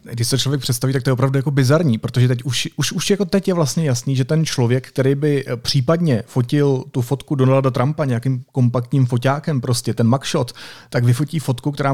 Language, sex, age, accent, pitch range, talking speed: Czech, male, 40-59, native, 125-145 Hz, 205 wpm